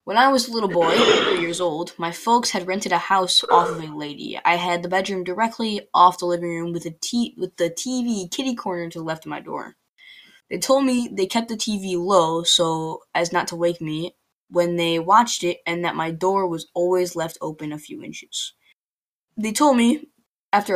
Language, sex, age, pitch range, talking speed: English, female, 10-29, 170-200 Hz, 215 wpm